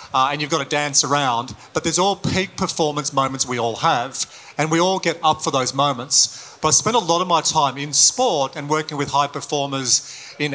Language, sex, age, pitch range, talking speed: English, male, 40-59, 135-165 Hz, 230 wpm